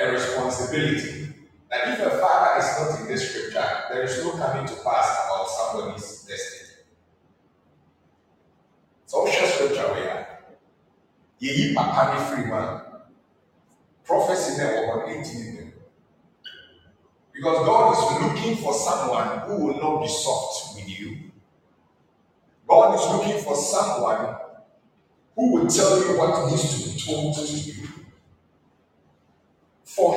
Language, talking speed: English, 125 wpm